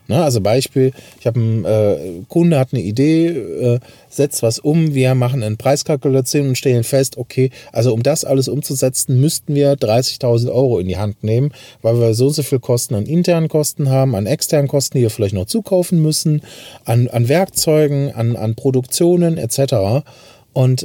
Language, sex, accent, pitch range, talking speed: German, male, German, 115-140 Hz, 180 wpm